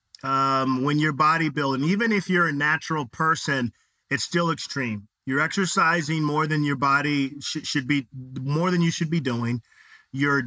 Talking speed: 160 wpm